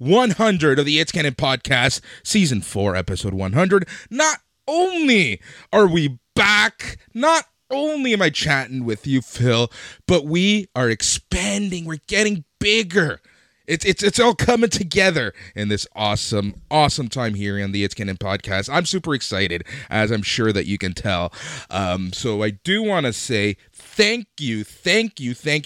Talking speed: 160 wpm